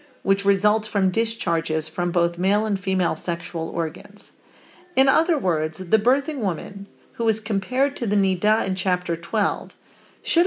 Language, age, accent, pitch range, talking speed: English, 50-69, American, 185-235 Hz, 155 wpm